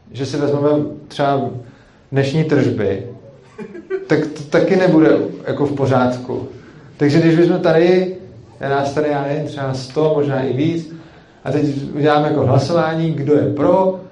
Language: Czech